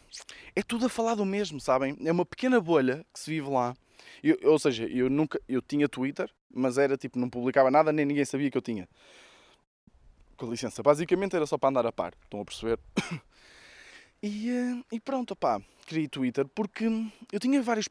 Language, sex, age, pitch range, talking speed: Portuguese, male, 20-39, 130-205 Hz, 190 wpm